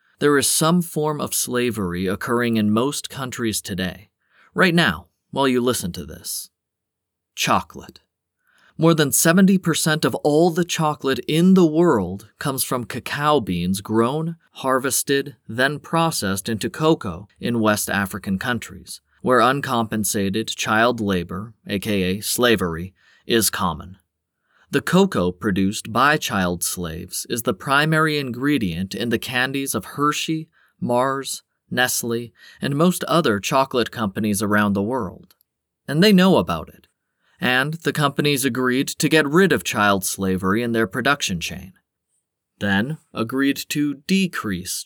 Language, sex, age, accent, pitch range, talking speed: English, male, 30-49, American, 95-145 Hz, 130 wpm